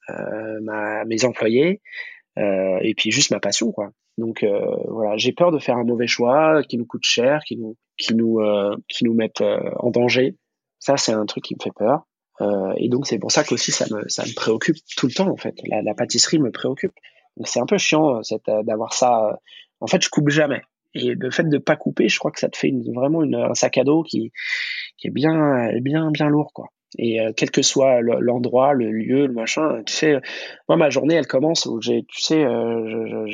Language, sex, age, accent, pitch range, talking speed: French, male, 20-39, French, 115-145 Hz, 230 wpm